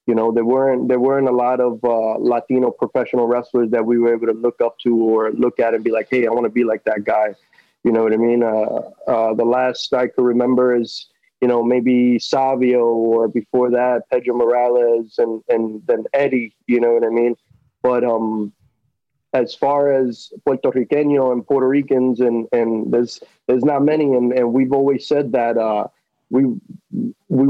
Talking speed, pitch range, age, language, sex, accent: 200 wpm, 115-130 Hz, 20-39, English, male, American